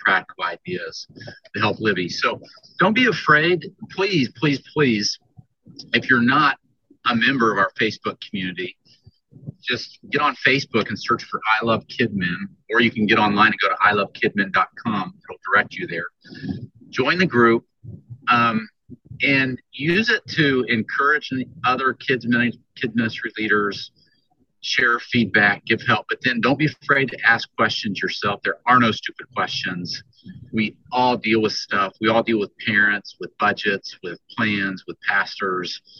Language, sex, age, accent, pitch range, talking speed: English, male, 50-69, American, 110-140 Hz, 155 wpm